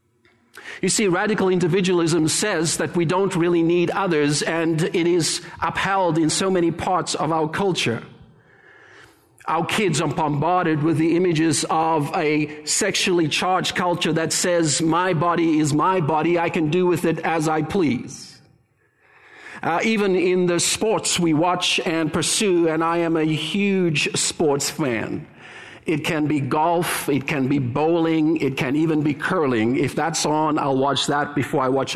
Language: English